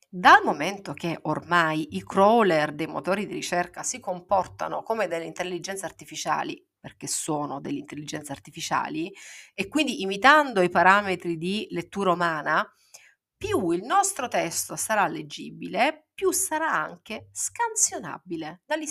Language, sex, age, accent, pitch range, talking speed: Italian, female, 40-59, native, 170-285 Hz, 125 wpm